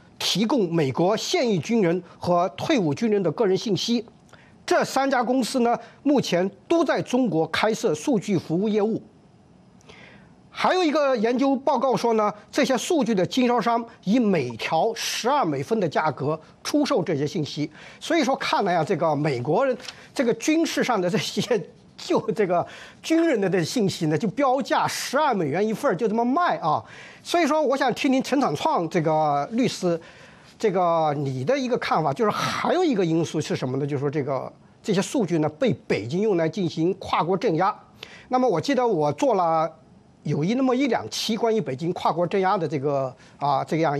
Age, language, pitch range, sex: 50-69, Chinese, 165-255 Hz, male